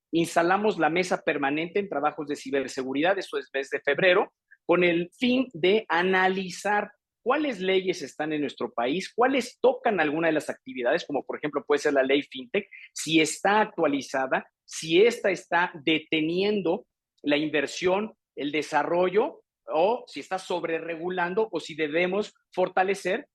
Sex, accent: male, Mexican